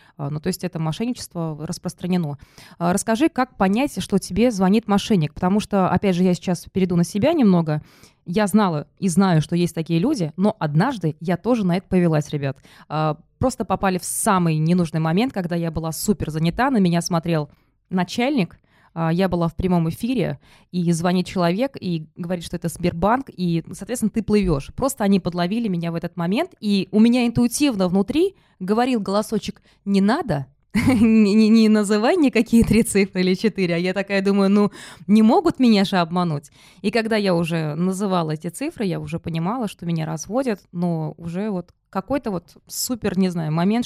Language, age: Russian, 20-39